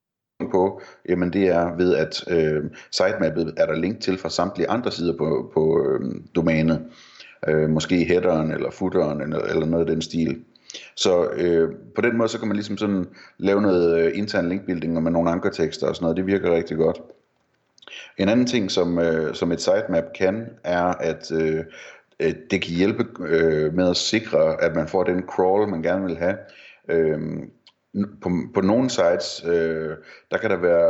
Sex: male